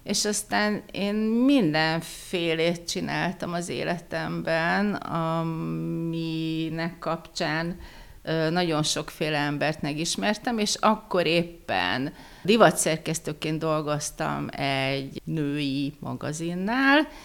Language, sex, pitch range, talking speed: Hungarian, female, 145-190 Hz, 75 wpm